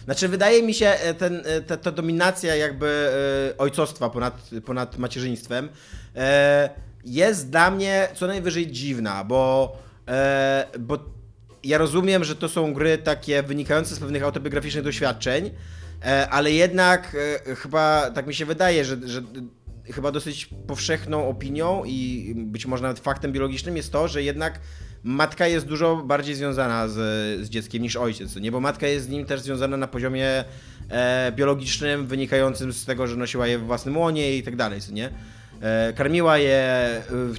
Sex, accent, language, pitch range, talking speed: male, native, Polish, 120-150 Hz, 150 wpm